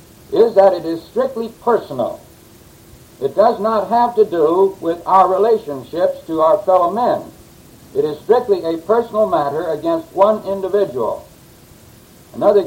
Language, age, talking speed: English, 60-79, 135 wpm